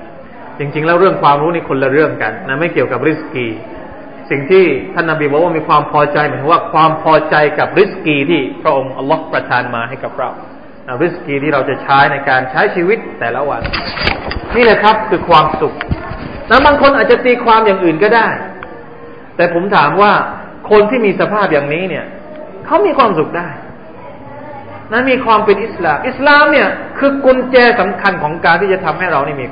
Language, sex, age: Thai, male, 20-39